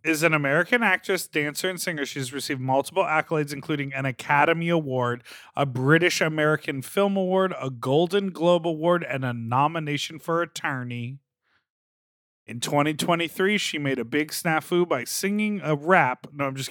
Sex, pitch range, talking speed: male, 140-175 Hz, 155 wpm